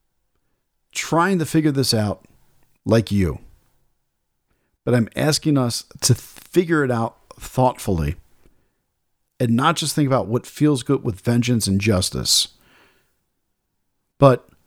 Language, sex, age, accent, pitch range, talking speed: English, male, 50-69, American, 100-130 Hz, 120 wpm